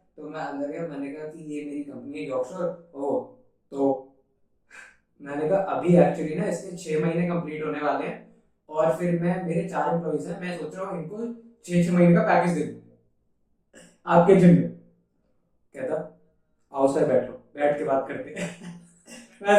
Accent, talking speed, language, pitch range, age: native, 140 wpm, Hindi, 150-190 Hz, 20-39